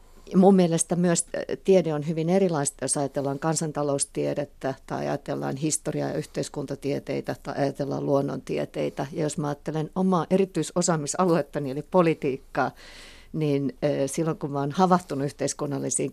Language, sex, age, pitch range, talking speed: Finnish, female, 50-69, 140-165 Hz, 125 wpm